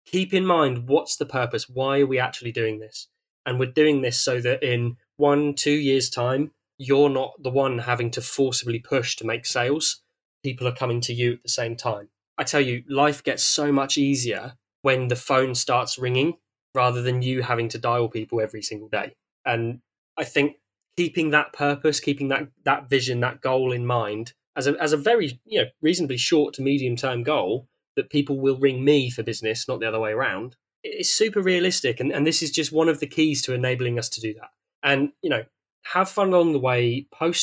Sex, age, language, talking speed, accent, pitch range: male, 10-29, English, 210 wpm, British, 120-150 Hz